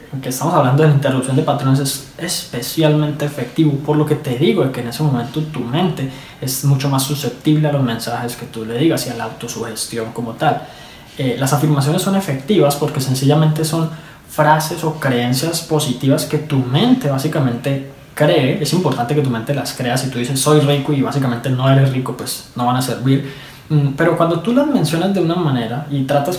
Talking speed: 200 wpm